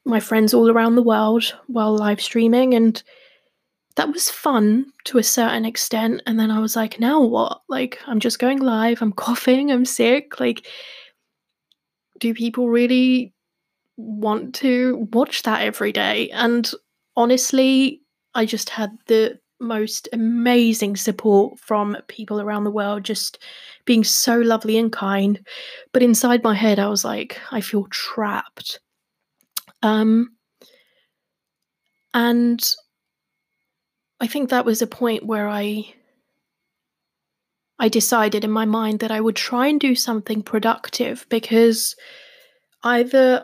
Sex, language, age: female, English, 10-29